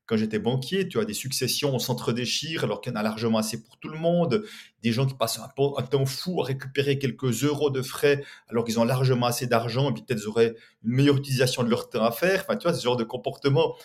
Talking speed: 265 wpm